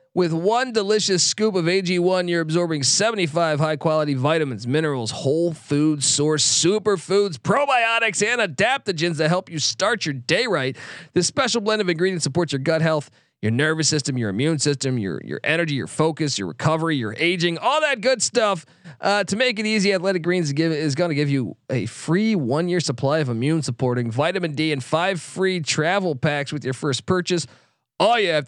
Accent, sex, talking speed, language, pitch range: American, male, 190 wpm, English, 140-185 Hz